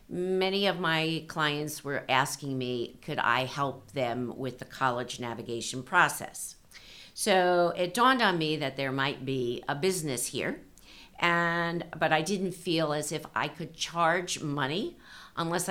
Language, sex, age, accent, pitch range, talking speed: English, female, 50-69, American, 140-175 Hz, 155 wpm